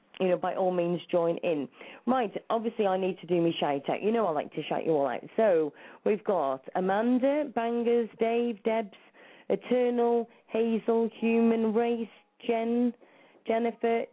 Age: 30-49